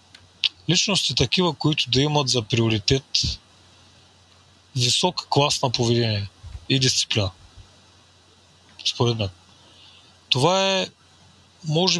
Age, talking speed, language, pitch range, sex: 30-49, 90 wpm, Bulgarian, 95-140 Hz, male